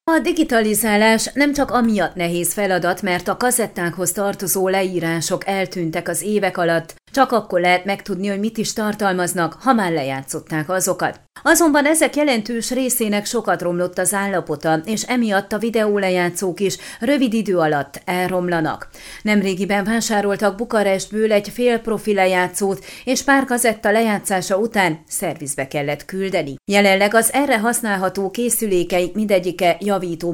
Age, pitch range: 30-49, 175-225 Hz